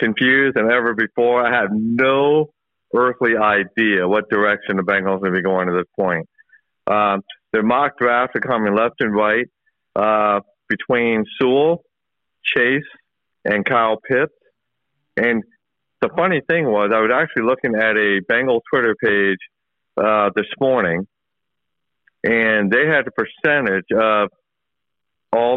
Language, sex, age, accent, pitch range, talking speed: English, male, 50-69, American, 105-130 Hz, 145 wpm